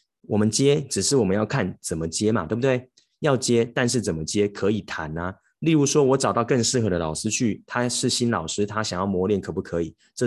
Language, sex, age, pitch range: Chinese, male, 20-39, 90-125 Hz